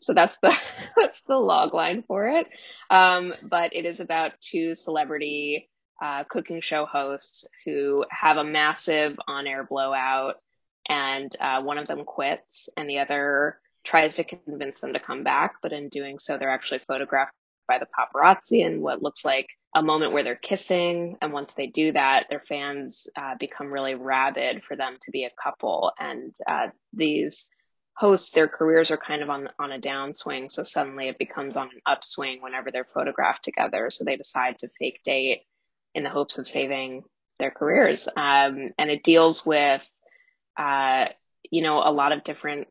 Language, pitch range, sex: English, 135-160 Hz, female